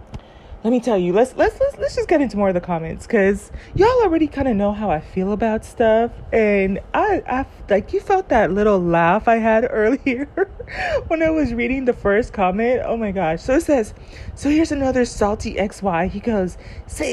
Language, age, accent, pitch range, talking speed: English, 20-39, American, 200-255 Hz, 205 wpm